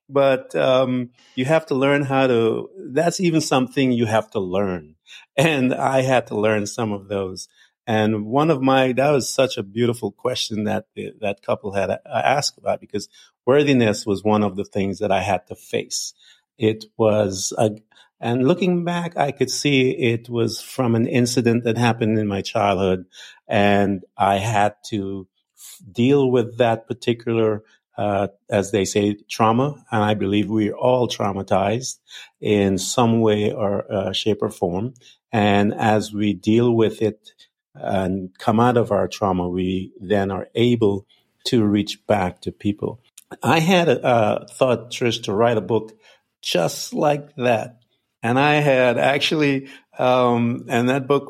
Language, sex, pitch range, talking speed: English, male, 105-130 Hz, 165 wpm